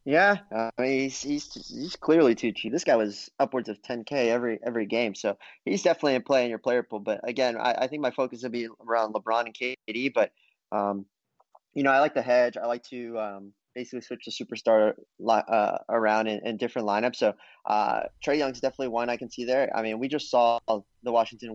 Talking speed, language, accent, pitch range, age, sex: 230 wpm, English, American, 110-135 Hz, 30-49, male